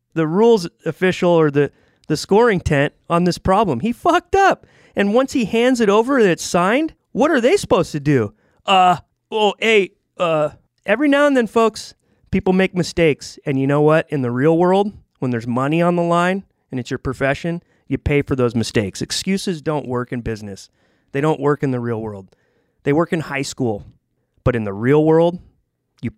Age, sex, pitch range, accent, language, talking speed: 30-49, male, 125-170 Hz, American, English, 200 wpm